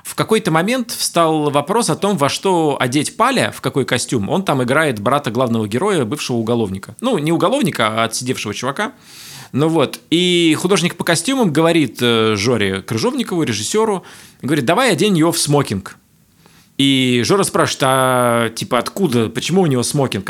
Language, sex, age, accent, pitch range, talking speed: Russian, male, 20-39, native, 135-195 Hz, 160 wpm